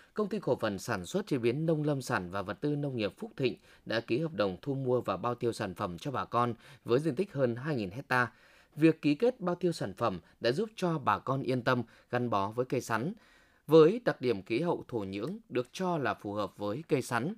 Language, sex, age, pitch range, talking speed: Vietnamese, male, 20-39, 110-160 Hz, 250 wpm